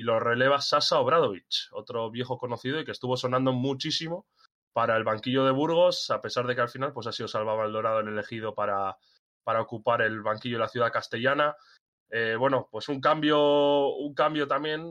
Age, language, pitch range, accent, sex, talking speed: 20-39, Spanish, 120-140 Hz, Spanish, male, 195 wpm